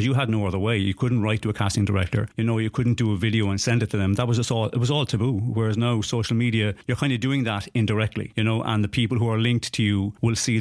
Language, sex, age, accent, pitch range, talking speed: English, male, 30-49, British, 105-120 Hz, 305 wpm